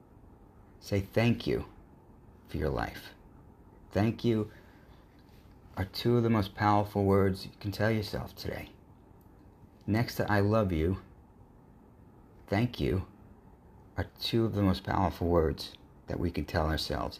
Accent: American